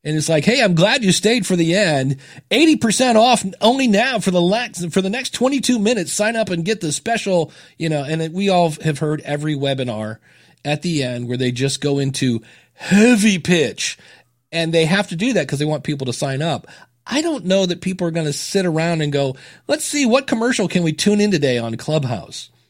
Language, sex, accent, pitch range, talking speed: English, male, American, 130-165 Hz, 215 wpm